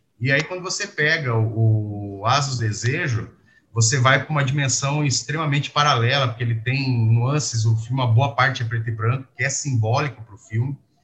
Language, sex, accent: Portuguese, male, Brazilian